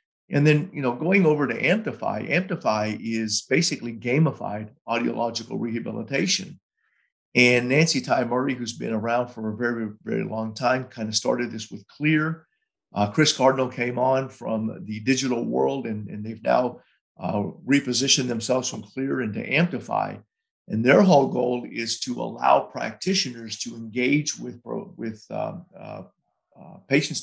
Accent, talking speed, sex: American, 150 wpm, male